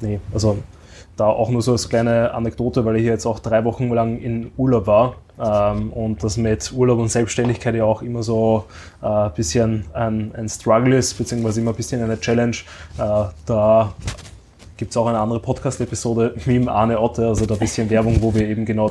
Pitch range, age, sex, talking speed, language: 110-120 Hz, 20-39, male, 205 wpm, German